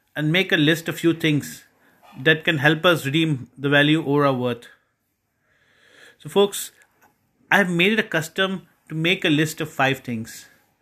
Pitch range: 140-185 Hz